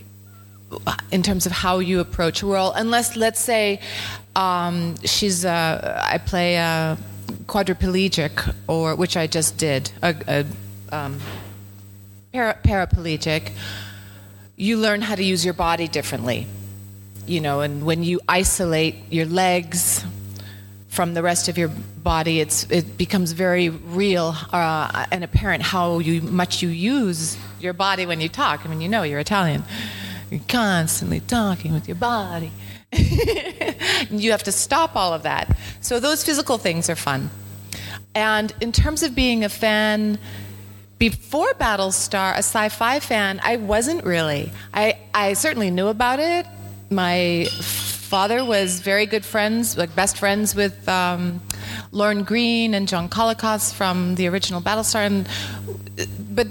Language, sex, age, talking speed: Italian, female, 30-49, 145 wpm